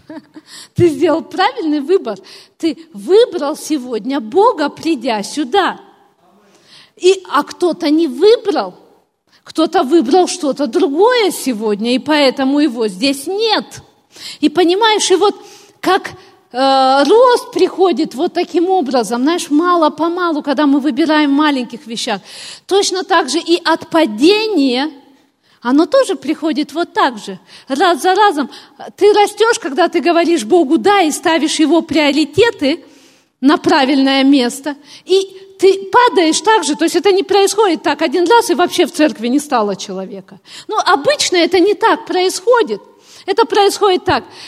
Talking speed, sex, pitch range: 135 wpm, female, 280-375 Hz